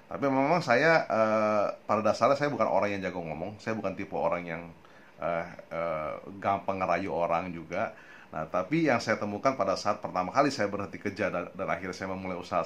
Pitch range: 100-130 Hz